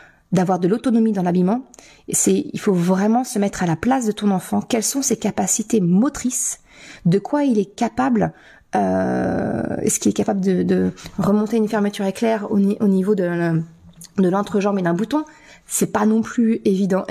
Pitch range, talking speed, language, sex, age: 185-235 Hz, 185 wpm, French, female, 30-49